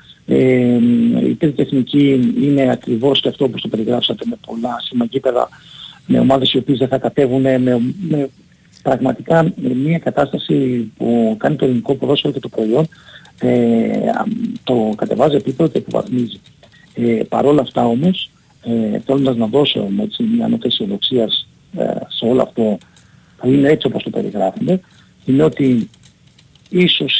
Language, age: Greek, 50-69